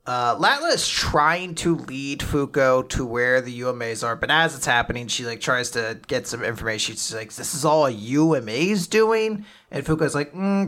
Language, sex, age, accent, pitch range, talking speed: English, male, 30-49, American, 130-185 Hz, 190 wpm